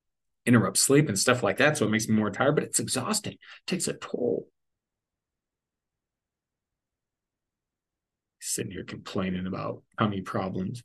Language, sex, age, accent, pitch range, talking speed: English, male, 30-49, American, 100-145 Hz, 145 wpm